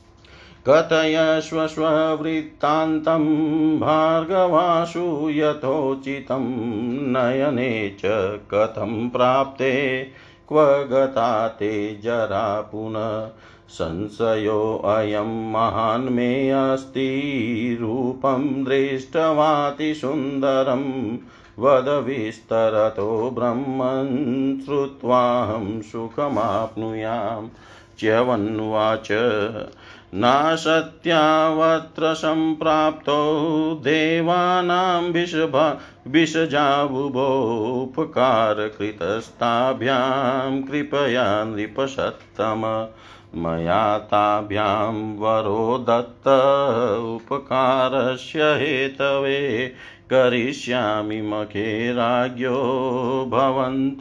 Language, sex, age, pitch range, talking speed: Hindi, male, 50-69, 110-145 Hz, 40 wpm